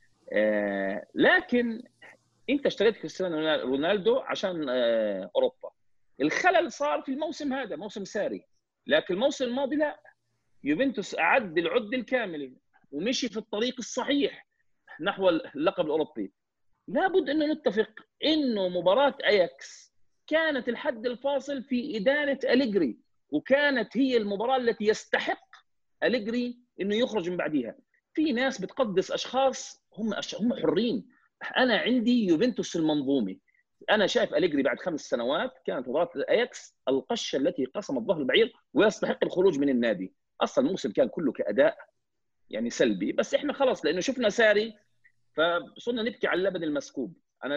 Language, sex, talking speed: Arabic, male, 125 wpm